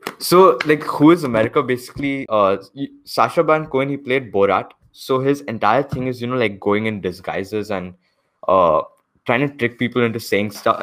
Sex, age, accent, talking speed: male, 10-29, Indian, 185 wpm